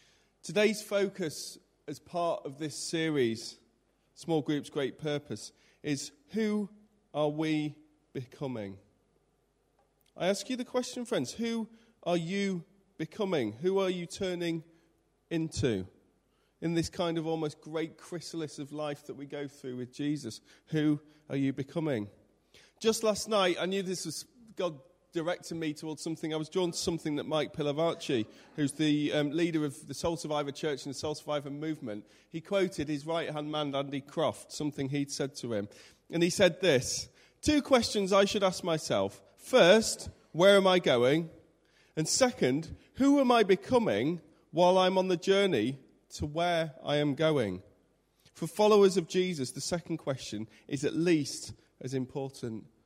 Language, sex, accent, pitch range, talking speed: English, male, British, 140-180 Hz, 160 wpm